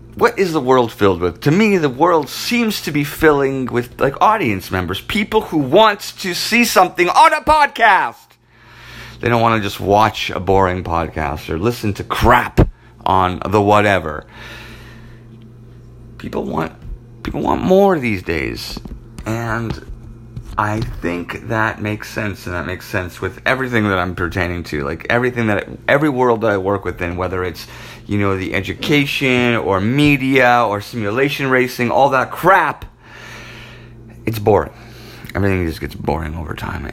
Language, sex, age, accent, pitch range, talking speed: English, male, 30-49, American, 100-120 Hz, 160 wpm